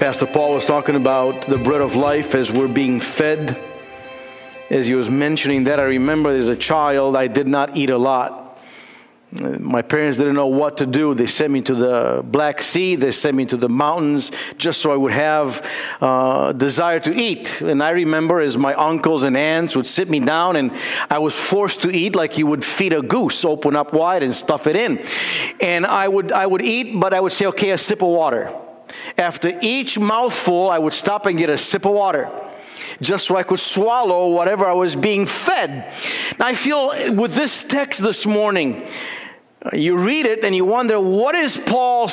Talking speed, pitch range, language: 200 wpm, 140-200 Hz, English